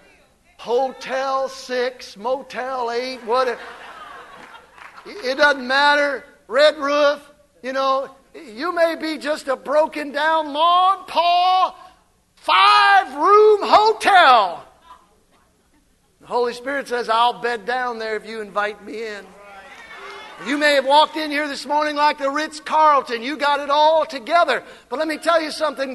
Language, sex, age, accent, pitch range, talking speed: English, male, 50-69, American, 245-325 Hz, 135 wpm